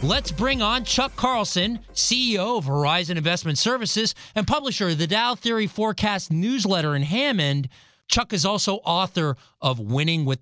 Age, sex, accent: 40-59, male, American